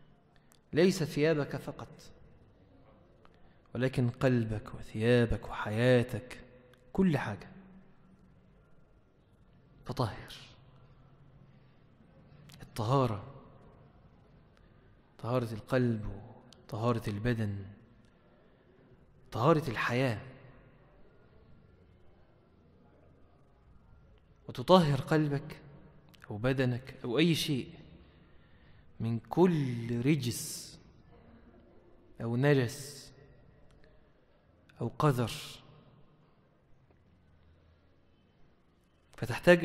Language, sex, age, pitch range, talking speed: English, male, 30-49, 120-155 Hz, 50 wpm